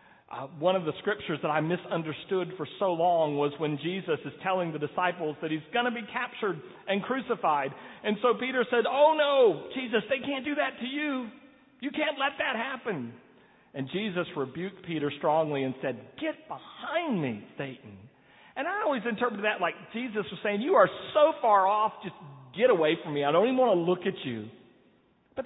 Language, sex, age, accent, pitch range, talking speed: English, male, 40-59, American, 145-235 Hz, 195 wpm